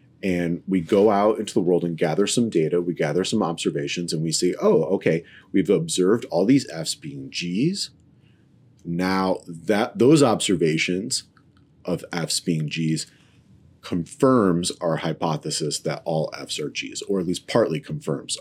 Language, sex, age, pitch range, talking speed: English, male, 30-49, 85-125 Hz, 155 wpm